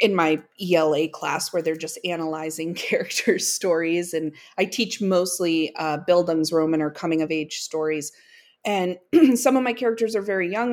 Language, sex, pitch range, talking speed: English, female, 165-210 Hz, 150 wpm